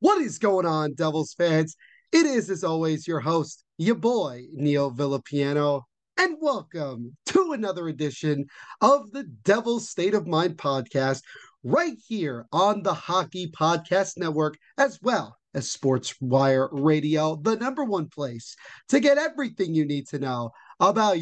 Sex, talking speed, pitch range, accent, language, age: male, 145 wpm, 140-195 Hz, American, English, 30-49